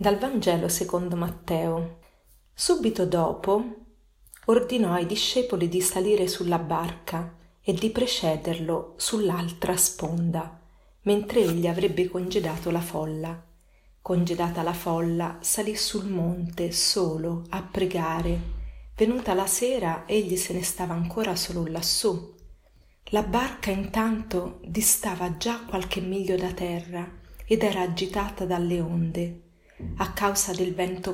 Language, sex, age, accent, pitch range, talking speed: Italian, female, 30-49, native, 170-200 Hz, 120 wpm